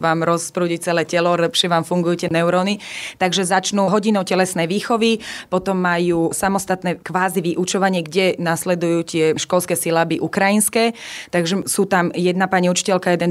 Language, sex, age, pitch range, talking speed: Slovak, female, 20-39, 170-190 Hz, 145 wpm